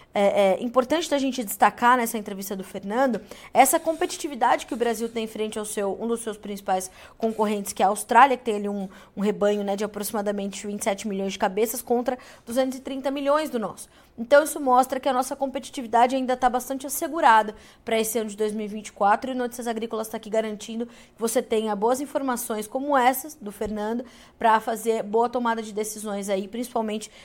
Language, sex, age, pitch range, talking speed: Portuguese, female, 20-39, 215-270 Hz, 185 wpm